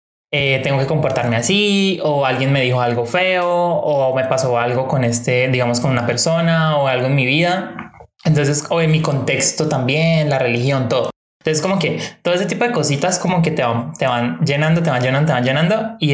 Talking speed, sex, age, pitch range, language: 210 wpm, male, 20-39, 125-155 Hz, Spanish